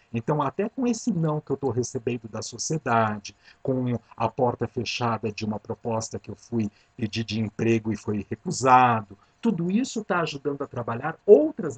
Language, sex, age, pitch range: Portuguese, male, 50-69, 115-175 Hz